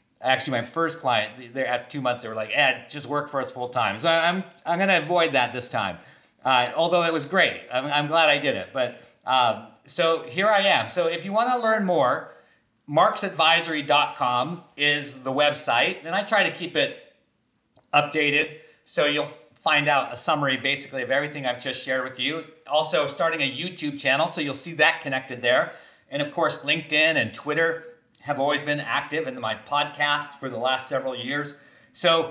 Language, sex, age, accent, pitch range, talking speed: English, male, 40-59, American, 135-170 Hz, 195 wpm